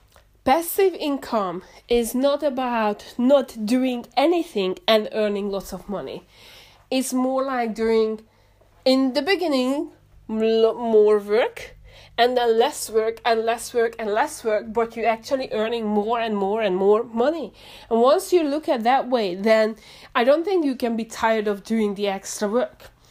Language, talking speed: English, 160 wpm